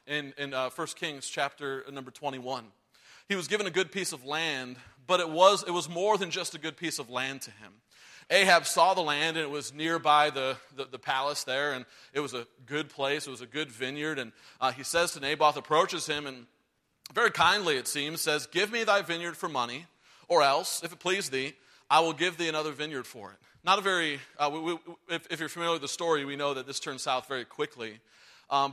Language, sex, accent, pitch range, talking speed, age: English, male, American, 135-170 Hz, 230 wpm, 30-49